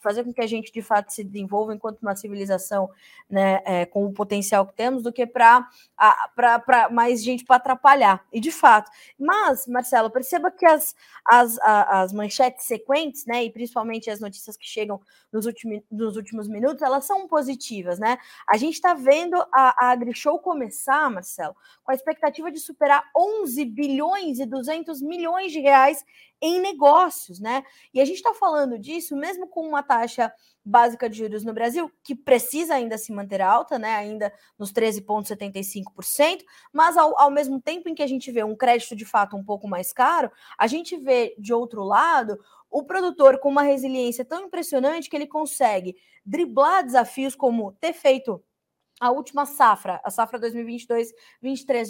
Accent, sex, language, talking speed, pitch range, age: Brazilian, female, Portuguese, 170 wpm, 220-290 Hz, 20-39